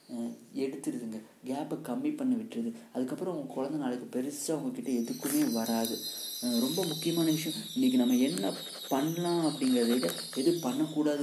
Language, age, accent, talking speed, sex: Tamil, 30-49, native, 130 wpm, male